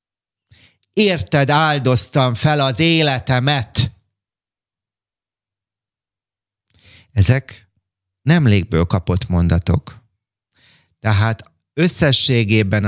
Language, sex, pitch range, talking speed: Hungarian, male, 100-120 Hz, 55 wpm